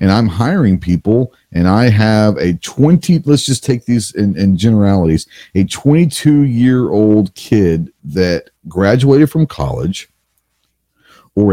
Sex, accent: male, American